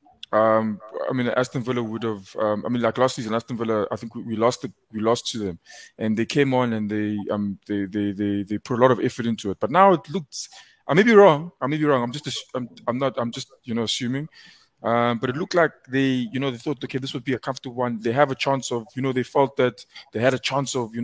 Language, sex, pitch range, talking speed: English, male, 115-135 Hz, 280 wpm